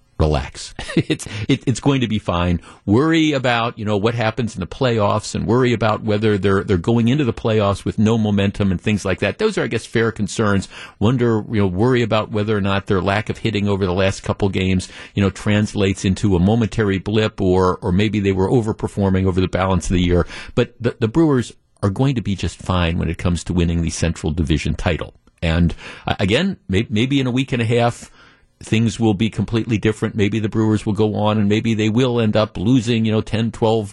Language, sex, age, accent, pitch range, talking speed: English, male, 50-69, American, 95-120 Hz, 225 wpm